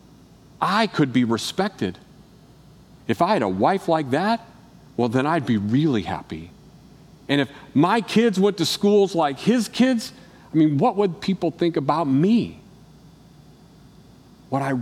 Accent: American